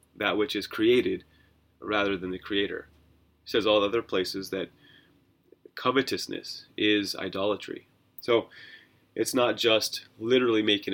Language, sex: English, male